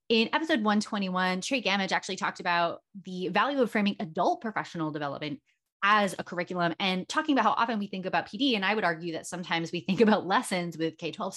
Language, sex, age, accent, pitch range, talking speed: English, female, 20-39, American, 175-245 Hz, 210 wpm